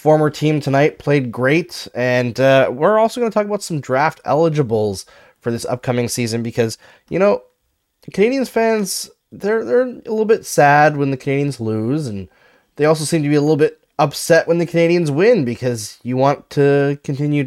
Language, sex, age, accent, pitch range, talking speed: English, male, 20-39, American, 115-170 Hz, 185 wpm